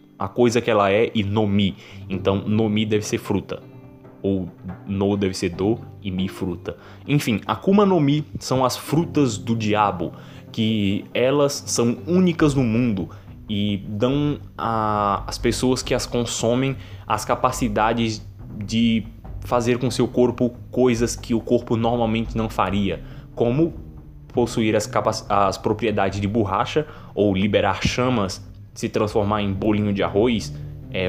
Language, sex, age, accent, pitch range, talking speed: Portuguese, male, 20-39, Brazilian, 100-125 Hz, 145 wpm